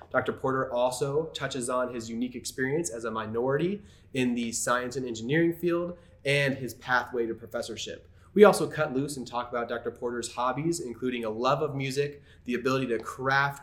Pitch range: 115-140 Hz